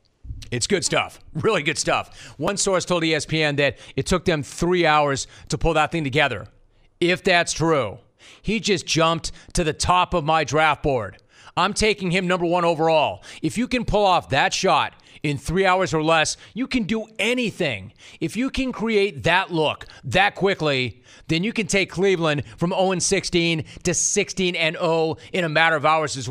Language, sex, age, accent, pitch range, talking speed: English, male, 30-49, American, 140-180 Hz, 180 wpm